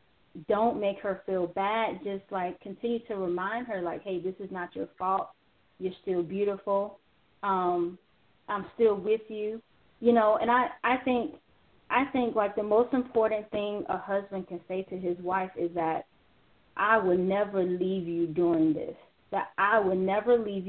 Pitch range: 180-210 Hz